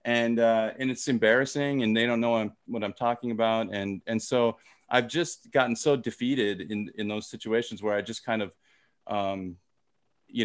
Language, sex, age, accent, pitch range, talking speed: English, male, 30-49, American, 110-135 Hz, 190 wpm